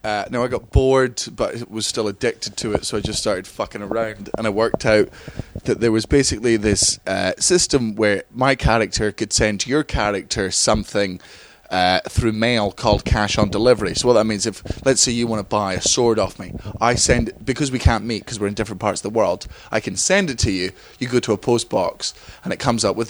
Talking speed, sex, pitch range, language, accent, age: 235 wpm, male, 100-115 Hz, English, British, 20-39